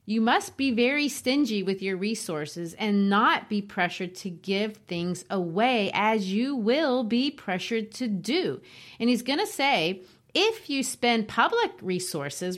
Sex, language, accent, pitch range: female, English, American, 190-240 Hz